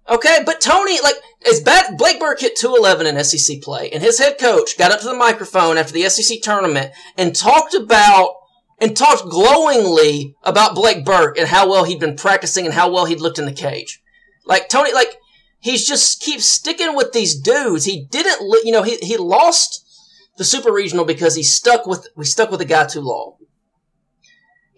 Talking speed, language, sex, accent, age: 195 wpm, English, male, American, 30-49